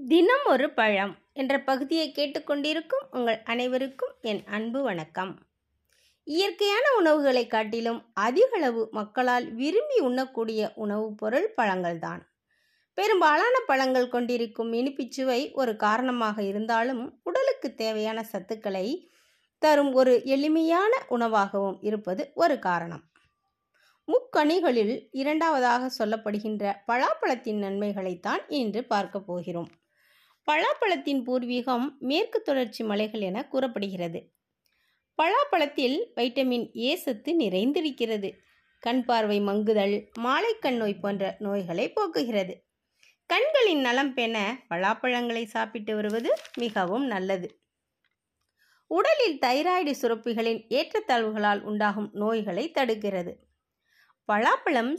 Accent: native